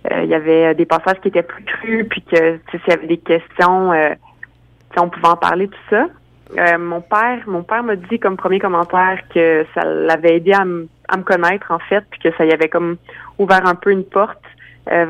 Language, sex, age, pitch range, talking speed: French, female, 30-49, 165-195 Hz, 230 wpm